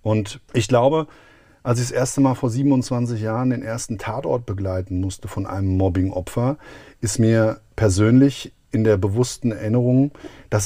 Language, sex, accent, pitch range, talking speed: German, male, German, 105-130 Hz, 150 wpm